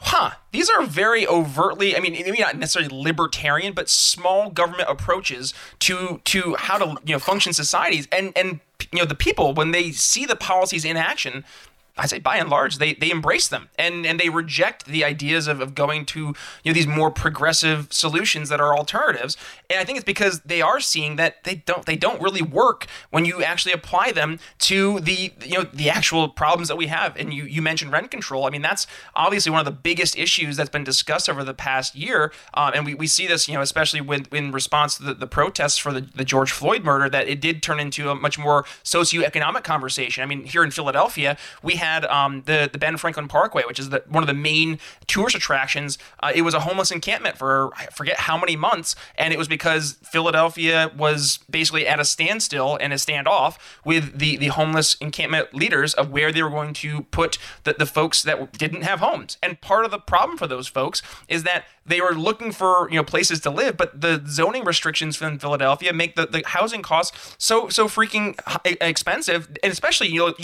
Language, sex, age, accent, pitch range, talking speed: English, male, 20-39, American, 145-175 Hz, 215 wpm